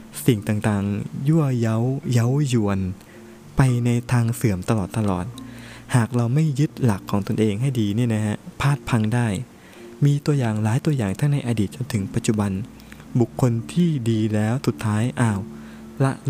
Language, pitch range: Thai, 105-130 Hz